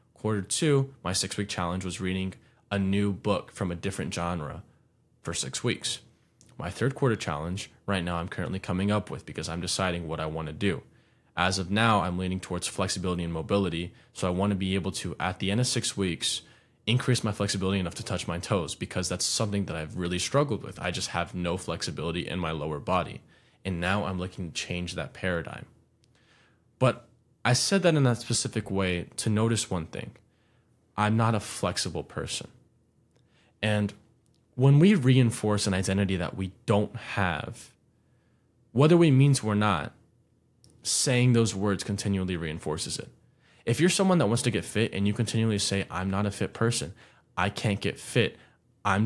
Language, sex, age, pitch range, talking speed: English, male, 20-39, 95-120 Hz, 185 wpm